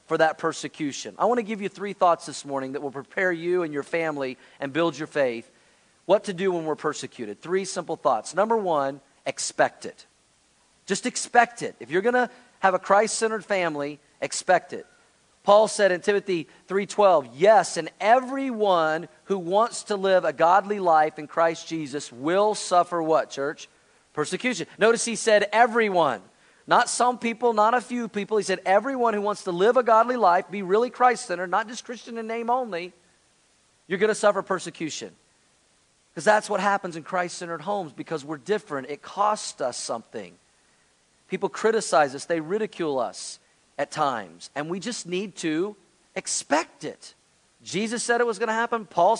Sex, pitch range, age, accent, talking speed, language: male, 165-215 Hz, 40-59, American, 175 wpm, English